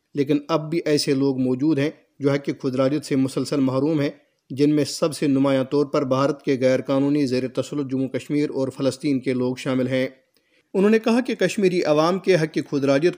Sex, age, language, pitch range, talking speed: male, 40-59, Urdu, 130-150 Hz, 205 wpm